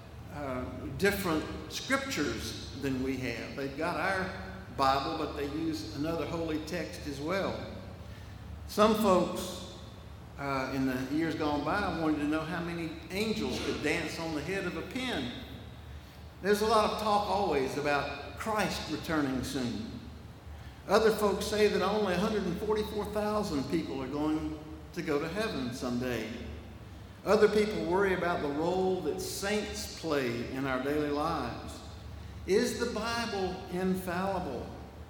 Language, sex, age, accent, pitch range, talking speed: English, male, 60-79, American, 135-205 Hz, 140 wpm